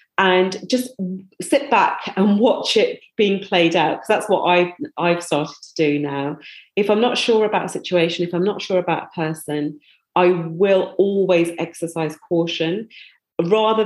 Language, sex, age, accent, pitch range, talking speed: English, female, 40-59, British, 165-195 Hz, 170 wpm